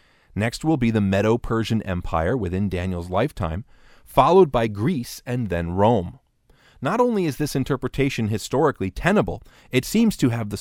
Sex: male